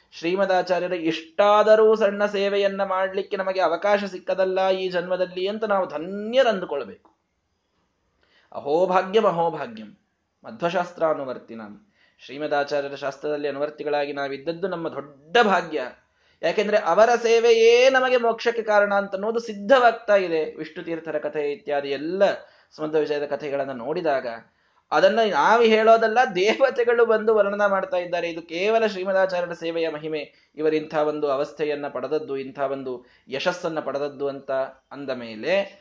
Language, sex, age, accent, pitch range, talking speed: Kannada, male, 20-39, native, 140-200 Hz, 110 wpm